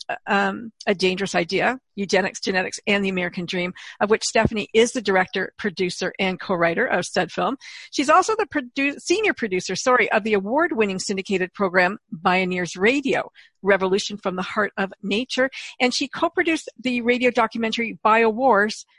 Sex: female